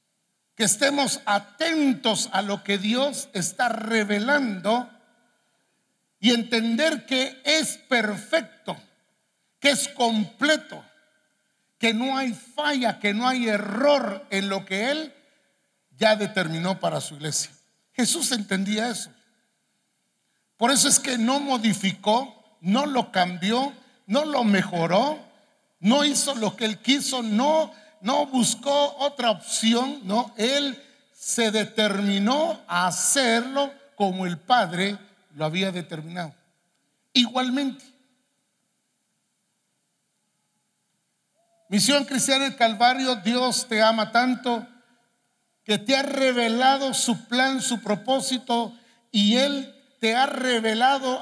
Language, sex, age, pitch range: English, male, 60-79, 210-265 Hz